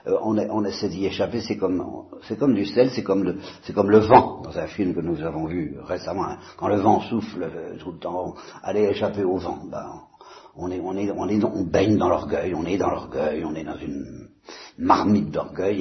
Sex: male